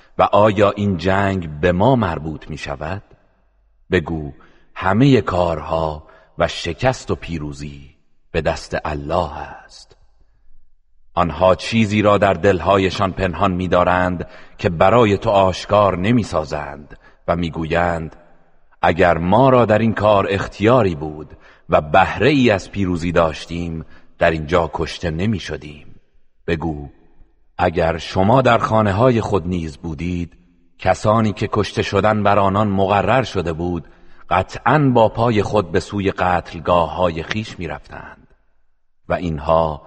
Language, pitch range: Persian, 80-100 Hz